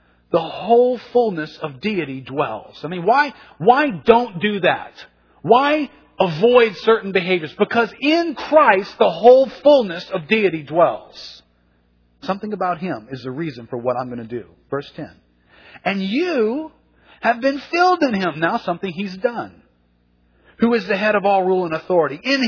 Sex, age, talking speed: male, 40-59, 165 wpm